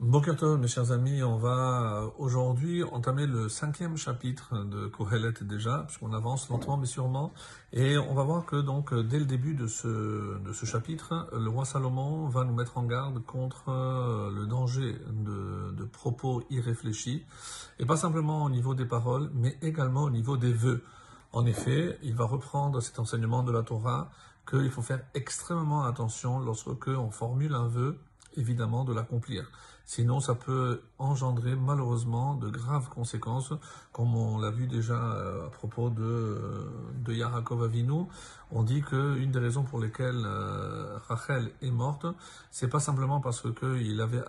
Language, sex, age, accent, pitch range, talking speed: French, male, 50-69, French, 115-135 Hz, 165 wpm